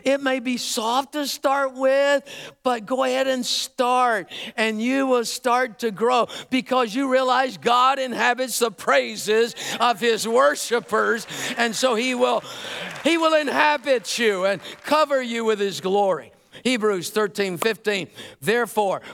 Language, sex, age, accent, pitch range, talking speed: English, male, 50-69, American, 195-245 Hz, 145 wpm